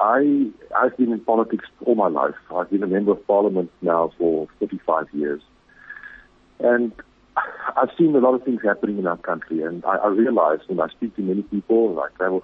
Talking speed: 205 wpm